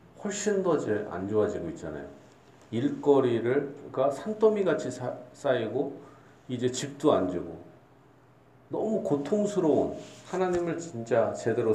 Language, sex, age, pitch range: Korean, male, 40-59, 95-135 Hz